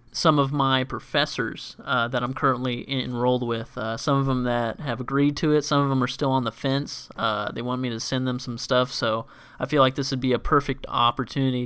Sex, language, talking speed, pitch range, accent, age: male, English, 240 wpm, 120-135 Hz, American, 20-39